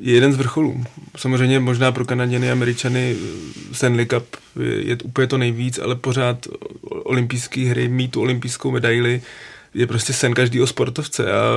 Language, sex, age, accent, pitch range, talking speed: Czech, male, 20-39, native, 120-130 Hz, 155 wpm